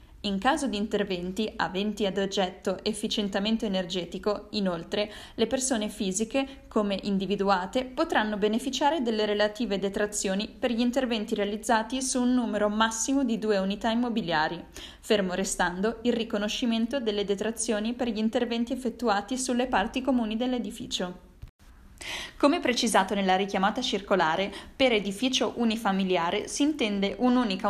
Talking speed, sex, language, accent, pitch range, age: 125 wpm, female, Italian, native, 195-245 Hz, 10-29